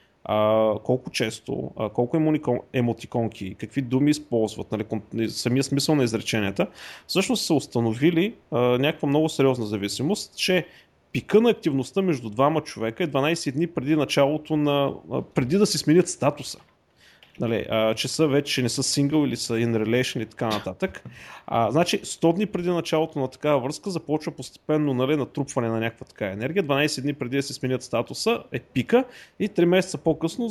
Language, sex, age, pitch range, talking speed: Bulgarian, male, 30-49, 120-170 Hz, 165 wpm